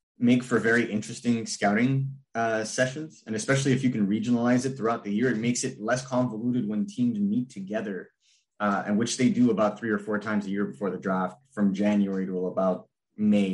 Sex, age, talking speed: male, 30-49, 205 wpm